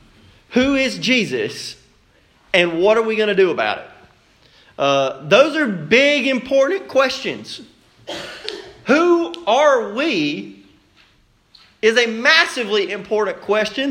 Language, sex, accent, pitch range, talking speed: English, male, American, 200-275 Hz, 110 wpm